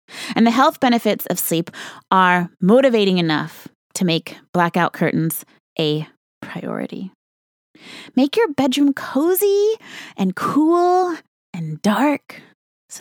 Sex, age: female, 20-39